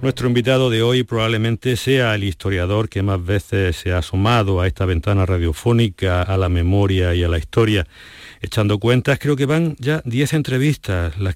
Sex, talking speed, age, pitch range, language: male, 180 wpm, 50-69, 95-120 Hz, Spanish